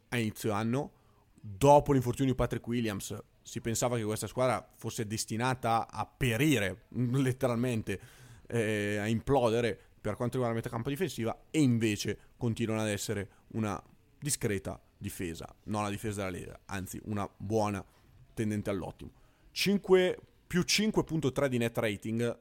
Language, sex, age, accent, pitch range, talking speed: Italian, male, 30-49, native, 105-120 Hz, 140 wpm